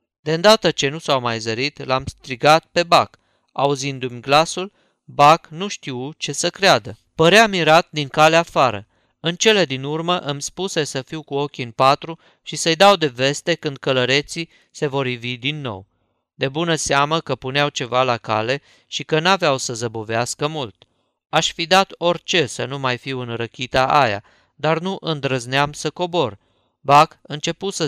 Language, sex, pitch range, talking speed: Romanian, male, 130-160 Hz, 170 wpm